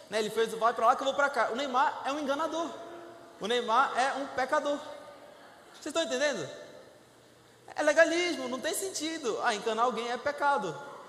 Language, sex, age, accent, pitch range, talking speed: Portuguese, male, 20-39, Brazilian, 235-300 Hz, 185 wpm